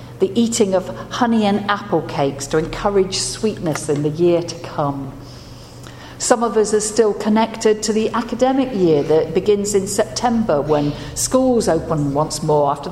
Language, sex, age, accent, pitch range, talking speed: English, female, 50-69, British, 145-205 Hz, 165 wpm